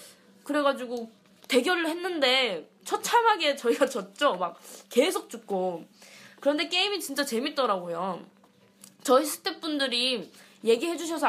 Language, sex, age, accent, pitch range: Korean, female, 20-39, native, 230-315 Hz